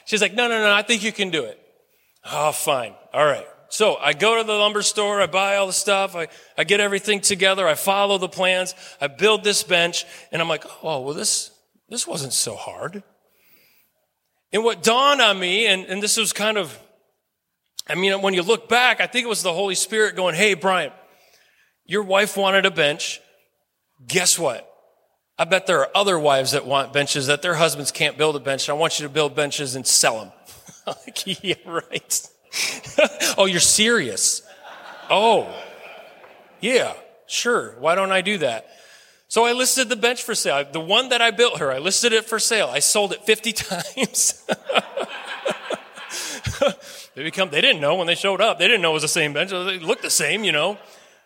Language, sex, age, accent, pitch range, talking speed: English, male, 30-49, American, 170-215 Hz, 195 wpm